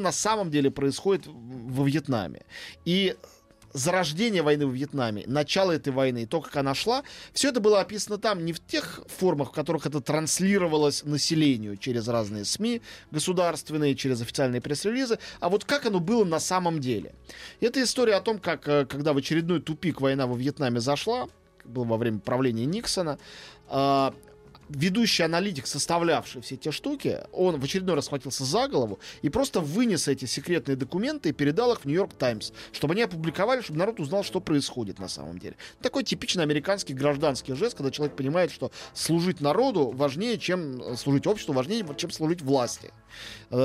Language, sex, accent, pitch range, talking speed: Russian, male, native, 135-185 Hz, 170 wpm